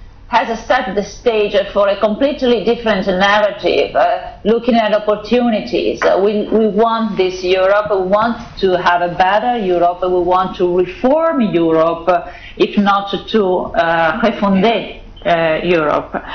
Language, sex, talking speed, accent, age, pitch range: English, female, 135 wpm, Italian, 40-59, 185-230 Hz